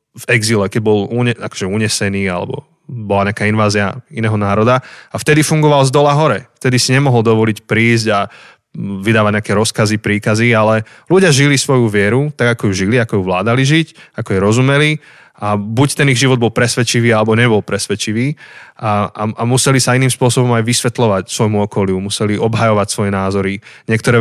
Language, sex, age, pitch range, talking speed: Slovak, male, 20-39, 105-130 Hz, 175 wpm